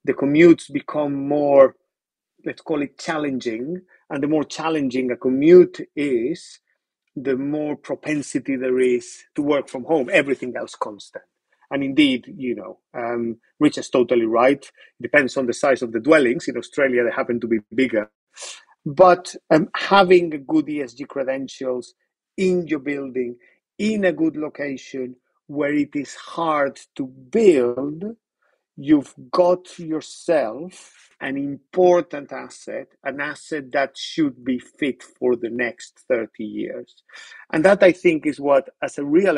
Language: English